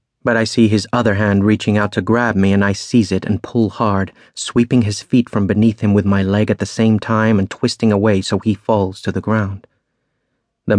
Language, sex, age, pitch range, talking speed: English, male, 30-49, 100-110 Hz, 230 wpm